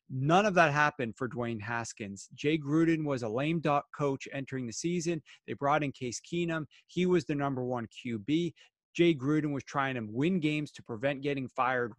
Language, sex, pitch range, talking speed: English, male, 130-160 Hz, 195 wpm